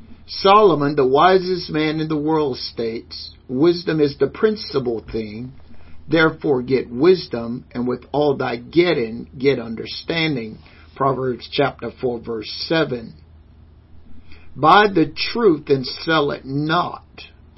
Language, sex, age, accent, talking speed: English, male, 50-69, American, 120 wpm